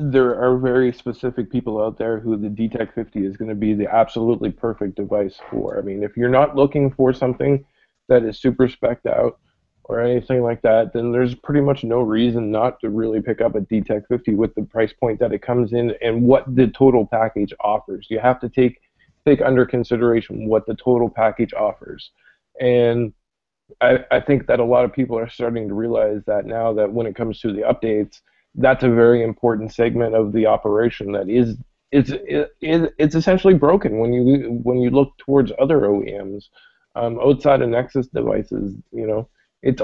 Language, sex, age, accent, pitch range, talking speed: English, male, 20-39, American, 110-135 Hz, 195 wpm